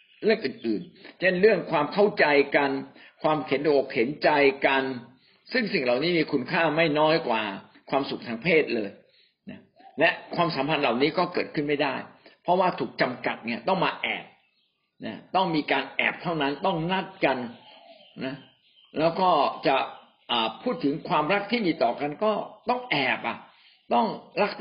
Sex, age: male, 60-79